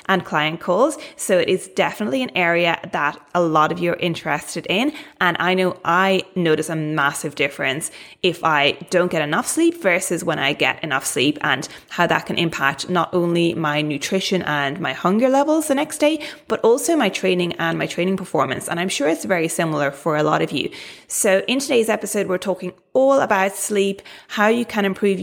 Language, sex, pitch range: English, female, 175-230 Hz